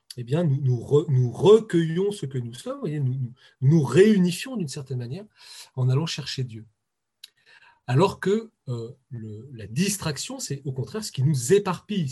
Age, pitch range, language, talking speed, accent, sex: 40-59, 130-195 Hz, French, 150 wpm, French, male